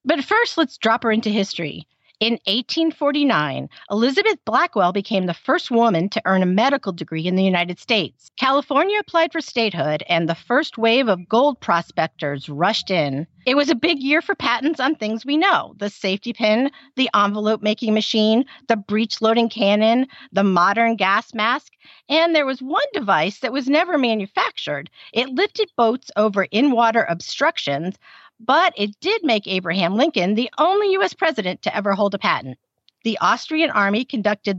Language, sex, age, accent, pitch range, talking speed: English, female, 40-59, American, 190-290 Hz, 165 wpm